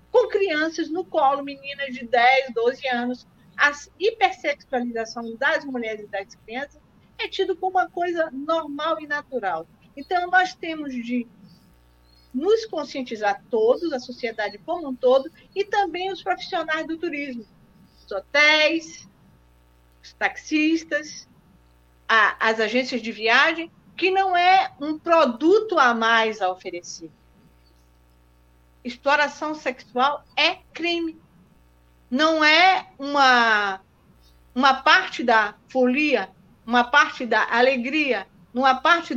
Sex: female